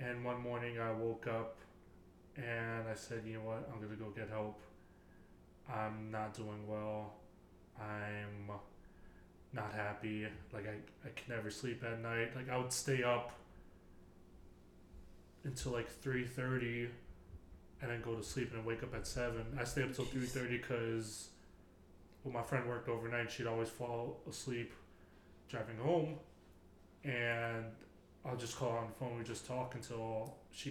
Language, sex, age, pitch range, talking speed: English, male, 20-39, 110-125 Hz, 160 wpm